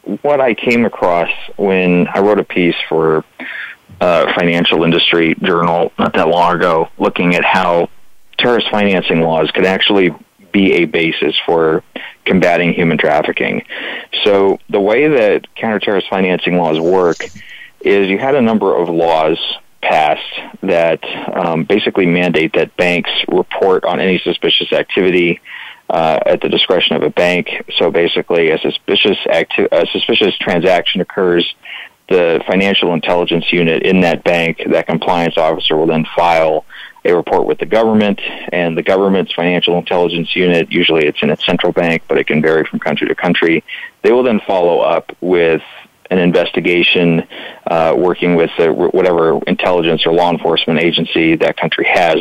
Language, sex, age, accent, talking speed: English, male, 40-59, American, 155 wpm